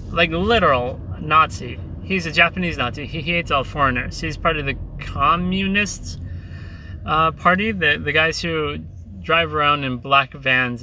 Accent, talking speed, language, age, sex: American, 150 wpm, English, 30-49, male